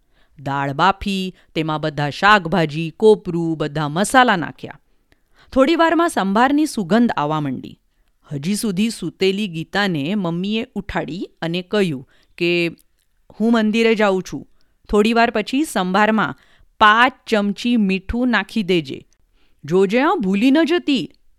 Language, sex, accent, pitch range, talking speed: English, female, Indian, 170-240 Hz, 120 wpm